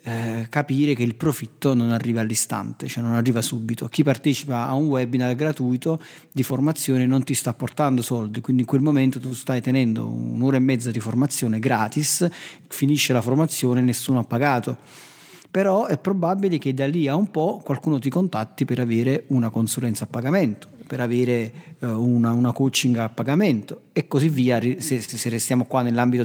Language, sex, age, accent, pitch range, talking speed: Italian, male, 40-59, native, 125-155 Hz, 175 wpm